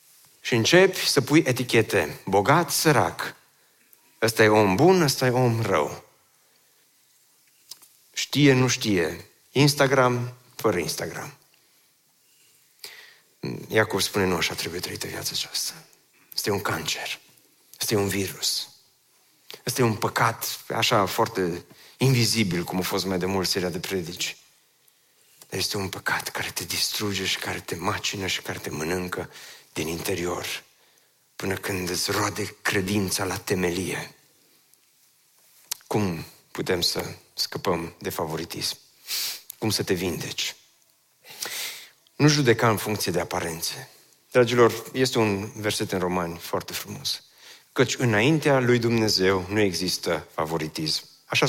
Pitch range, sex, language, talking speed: 100-130 Hz, male, Romanian, 125 wpm